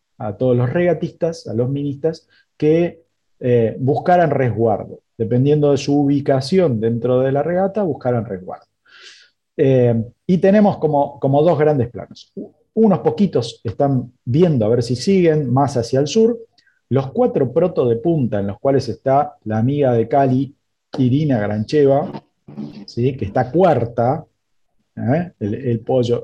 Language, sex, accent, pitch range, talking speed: Spanish, male, Argentinian, 115-150 Hz, 140 wpm